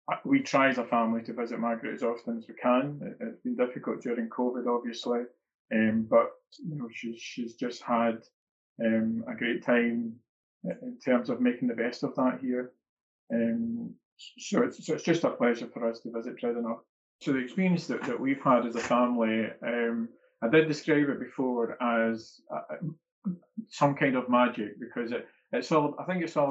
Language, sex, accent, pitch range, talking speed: English, male, British, 115-145 Hz, 190 wpm